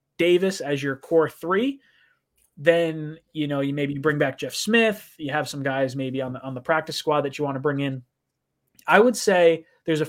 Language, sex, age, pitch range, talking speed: English, male, 20-39, 140-180 Hz, 215 wpm